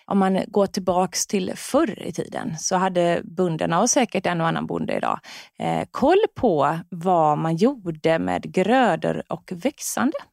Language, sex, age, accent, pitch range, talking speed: Swedish, female, 30-49, native, 185-250 Hz, 155 wpm